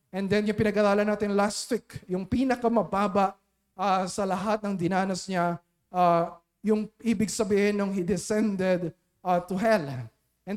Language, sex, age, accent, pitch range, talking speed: Filipino, male, 20-39, native, 170-225 Hz, 150 wpm